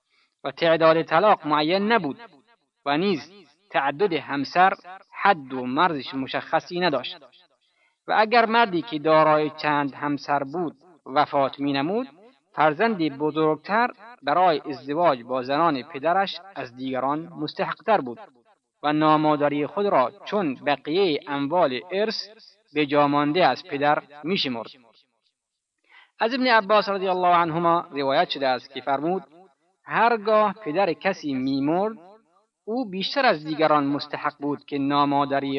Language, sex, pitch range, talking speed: Persian, male, 145-210 Hz, 120 wpm